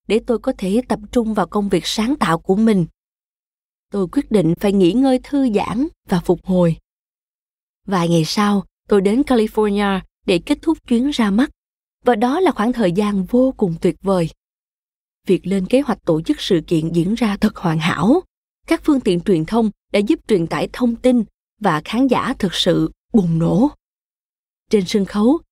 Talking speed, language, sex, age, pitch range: 190 wpm, Vietnamese, female, 20-39, 185-250 Hz